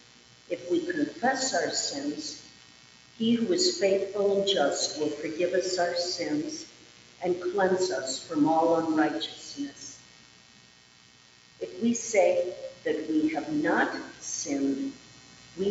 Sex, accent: female, American